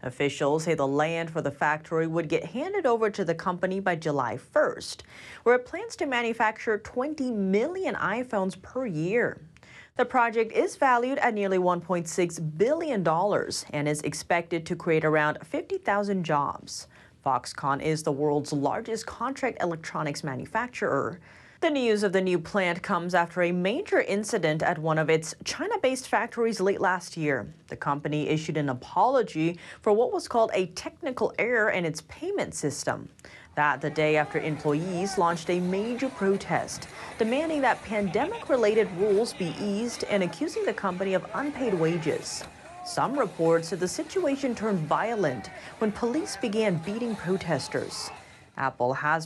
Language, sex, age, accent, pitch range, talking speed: English, female, 30-49, American, 160-235 Hz, 150 wpm